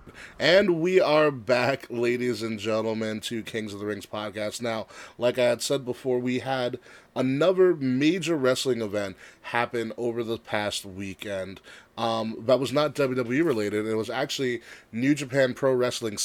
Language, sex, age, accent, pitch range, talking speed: English, male, 30-49, American, 110-135 Hz, 160 wpm